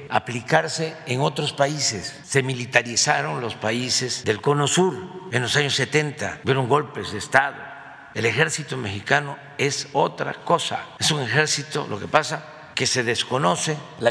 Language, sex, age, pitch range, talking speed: Spanish, male, 50-69, 120-150 Hz, 150 wpm